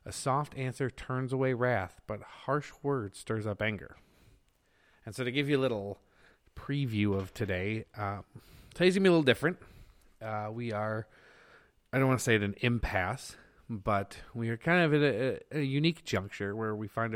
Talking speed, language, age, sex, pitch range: 190 wpm, English, 30-49, male, 100-125 Hz